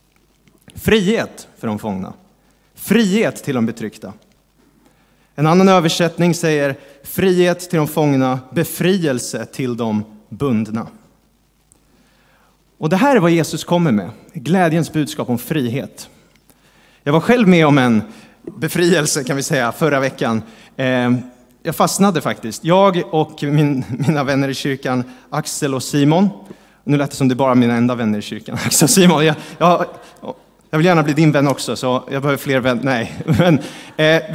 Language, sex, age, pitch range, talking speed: Swedish, male, 30-49, 130-170 Hz, 155 wpm